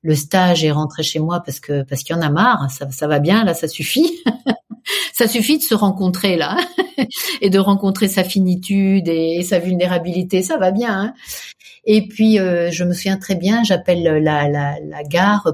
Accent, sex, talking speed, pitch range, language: French, female, 200 wpm, 145-185 Hz, French